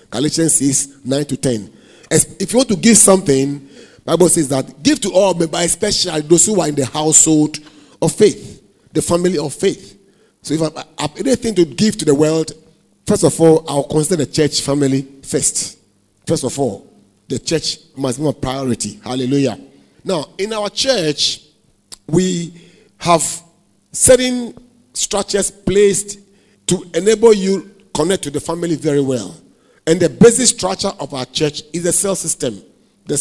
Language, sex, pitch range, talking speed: English, male, 150-190 Hz, 165 wpm